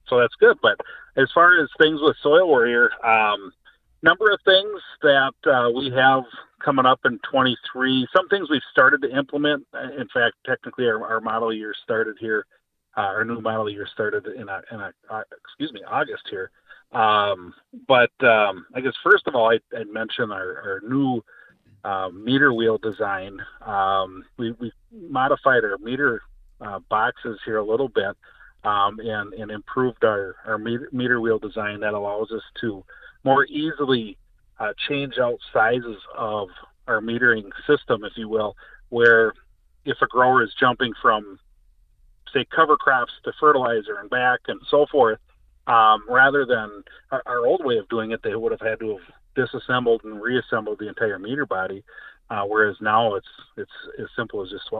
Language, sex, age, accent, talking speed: English, male, 40-59, American, 170 wpm